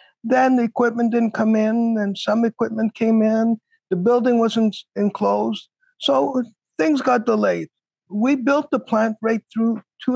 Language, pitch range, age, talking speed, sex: English, 215-260 Hz, 50-69, 155 wpm, male